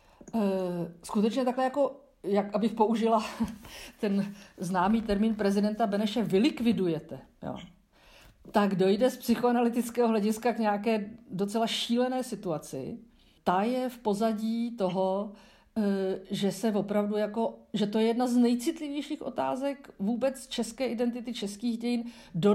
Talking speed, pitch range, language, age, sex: 115 wpm, 190-235 Hz, Slovak, 50-69, female